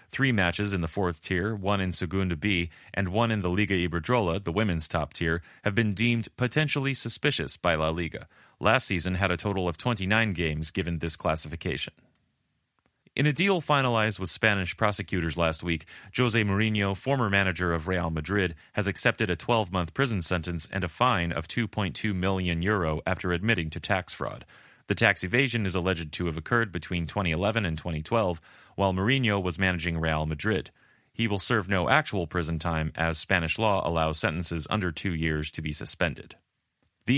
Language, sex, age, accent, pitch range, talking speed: English, male, 30-49, American, 85-110 Hz, 175 wpm